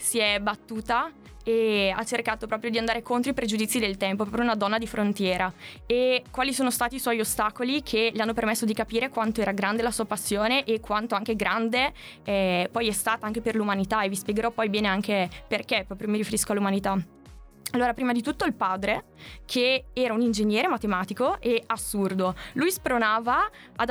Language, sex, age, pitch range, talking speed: Italian, female, 20-39, 200-240 Hz, 190 wpm